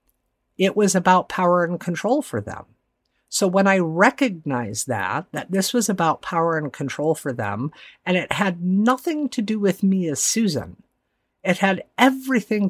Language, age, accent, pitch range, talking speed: English, 50-69, American, 145-195 Hz, 165 wpm